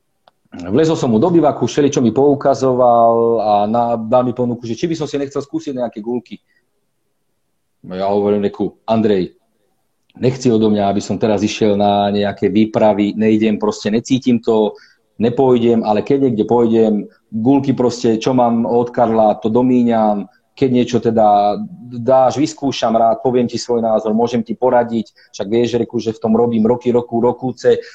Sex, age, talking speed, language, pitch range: male, 40-59, 165 wpm, Slovak, 110-135 Hz